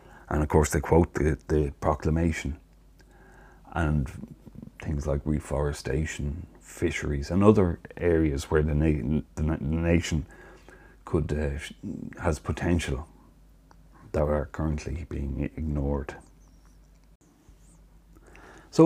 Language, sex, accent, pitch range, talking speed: English, male, Irish, 70-80 Hz, 95 wpm